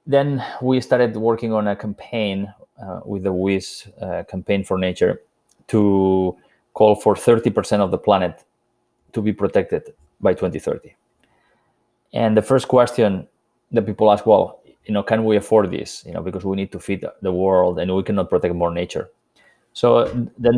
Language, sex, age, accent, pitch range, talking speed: English, male, 30-49, Spanish, 95-115 Hz, 165 wpm